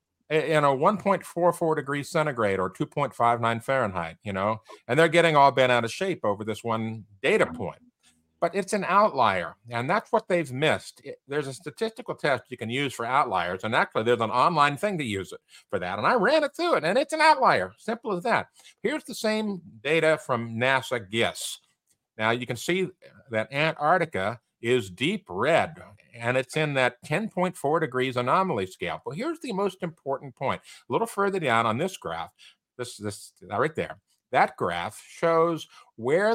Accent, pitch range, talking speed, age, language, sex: American, 125-185 Hz, 185 wpm, 50-69, English, male